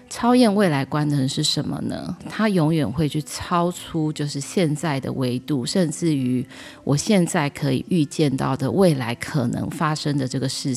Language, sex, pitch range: Chinese, female, 135-165 Hz